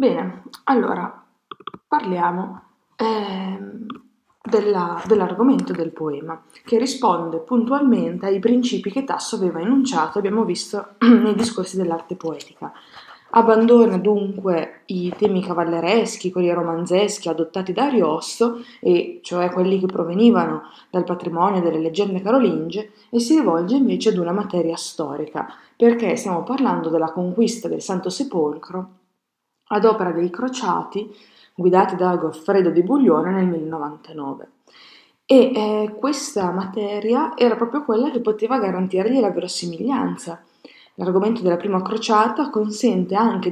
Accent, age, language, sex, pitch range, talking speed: native, 20-39, Italian, female, 175-225 Hz, 120 wpm